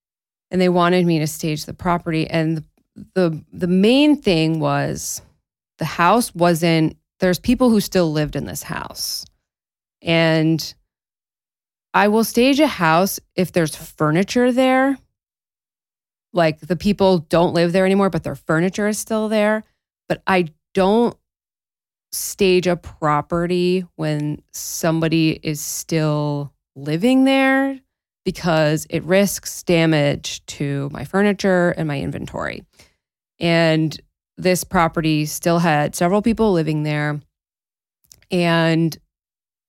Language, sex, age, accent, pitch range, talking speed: English, female, 20-39, American, 155-195 Hz, 120 wpm